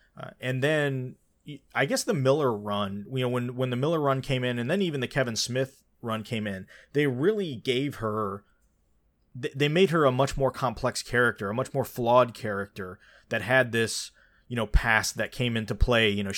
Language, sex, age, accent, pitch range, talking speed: English, male, 30-49, American, 105-130 Hz, 205 wpm